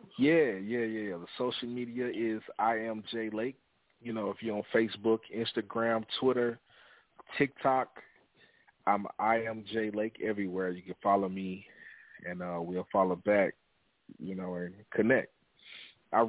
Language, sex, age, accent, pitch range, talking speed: English, male, 30-49, American, 95-110 Hz, 145 wpm